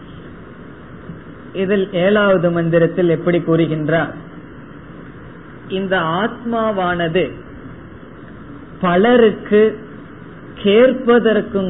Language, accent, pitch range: Tamil, native, 160-190 Hz